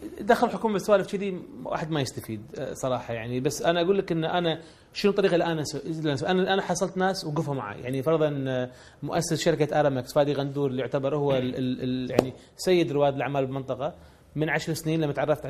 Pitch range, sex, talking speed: 135-170 Hz, male, 180 wpm